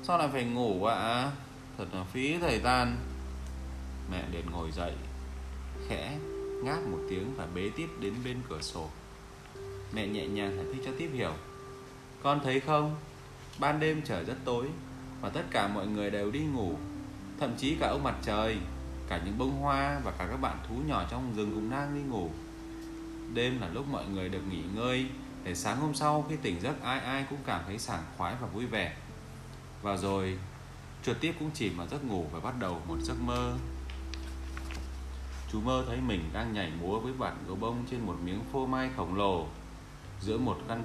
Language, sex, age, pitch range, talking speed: Vietnamese, male, 20-39, 85-130 Hz, 195 wpm